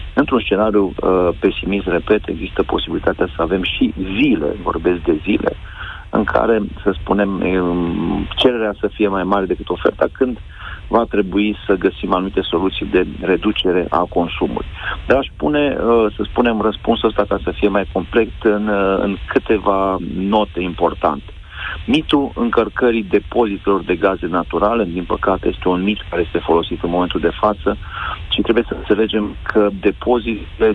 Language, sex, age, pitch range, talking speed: Romanian, male, 40-59, 95-110 Hz, 150 wpm